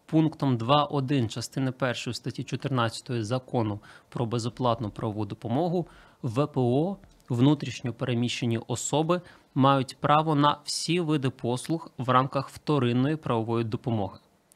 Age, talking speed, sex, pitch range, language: 20-39, 105 wpm, male, 120-150 Hz, Ukrainian